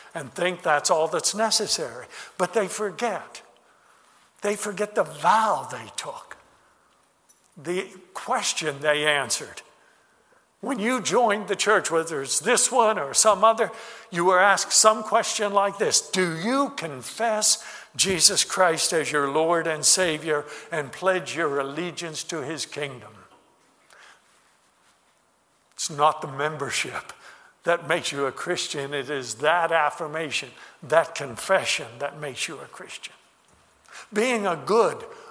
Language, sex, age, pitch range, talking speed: English, male, 60-79, 160-225 Hz, 135 wpm